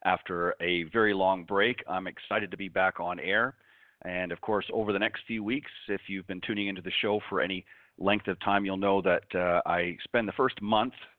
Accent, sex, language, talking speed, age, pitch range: American, male, English, 220 wpm, 40-59, 90-105 Hz